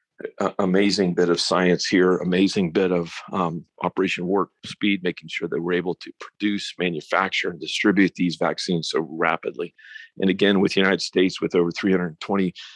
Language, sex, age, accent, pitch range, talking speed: English, male, 40-59, American, 85-95 Hz, 170 wpm